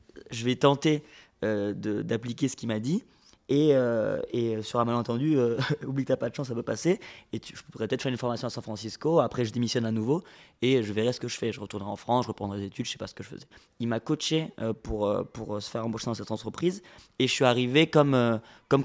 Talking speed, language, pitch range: 265 wpm, French, 115-145 Hz